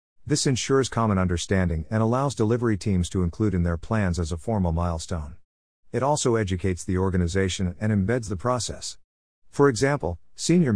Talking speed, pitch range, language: 160 wpm, 90-115 Hz, English